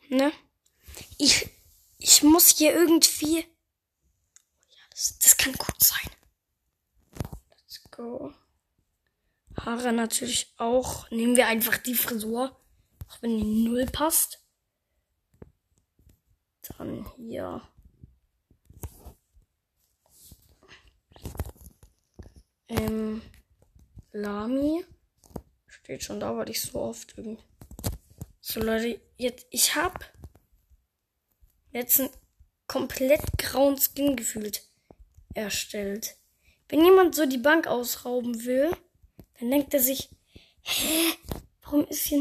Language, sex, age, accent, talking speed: German, female, 10-29, German, 95 wpm